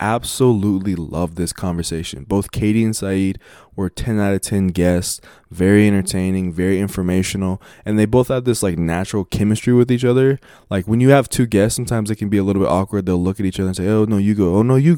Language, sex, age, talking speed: English, male, 20-39, 230 wpm